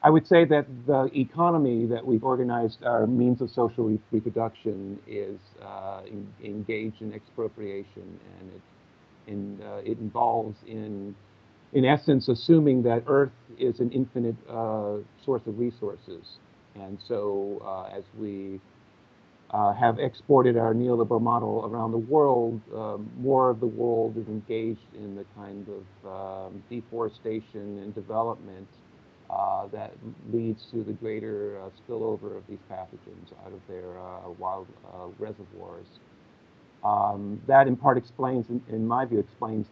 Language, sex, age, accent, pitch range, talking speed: English, male, 50-69, American, 105-125 Hz, 140 wpm